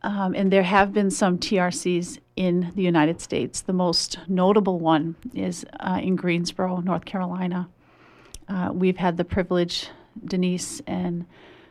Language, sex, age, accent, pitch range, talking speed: English, female, 40-59, American, 170-190 Hz, 145 wpm